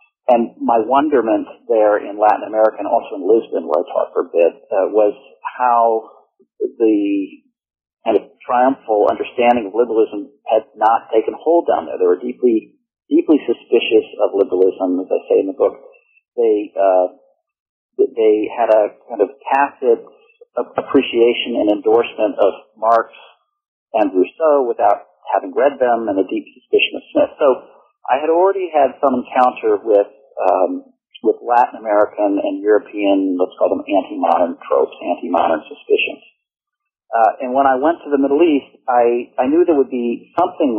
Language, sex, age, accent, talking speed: English, male, 50-69, American, 160 wpm